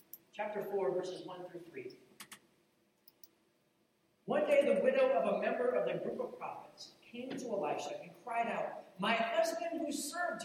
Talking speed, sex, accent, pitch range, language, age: 160 wpm, male, American, 180-260 Hz, English, 40-59